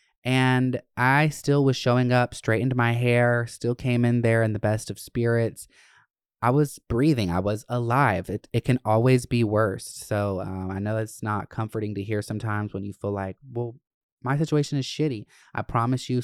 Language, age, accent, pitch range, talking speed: English, 20-39, American, 110-140 Hz, 190 wpm